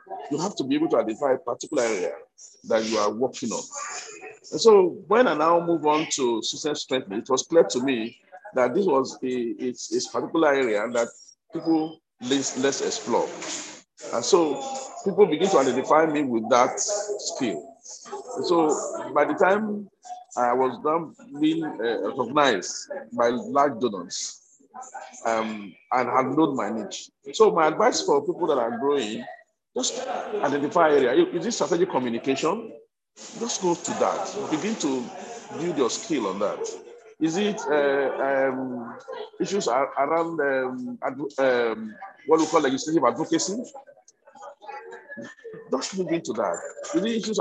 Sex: male